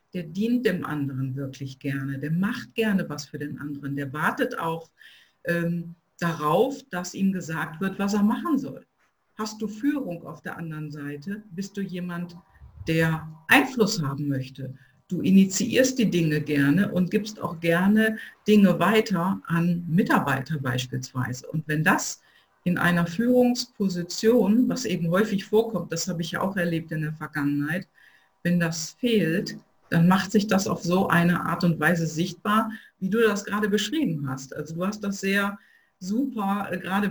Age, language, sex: 50-69, German, female